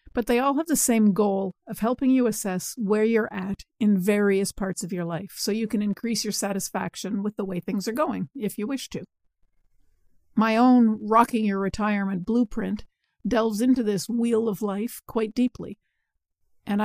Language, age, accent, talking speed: English, 50-69, American, 180 wpm